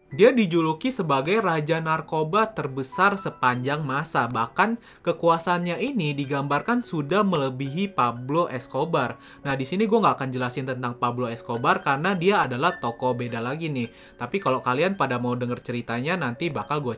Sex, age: male, 20-39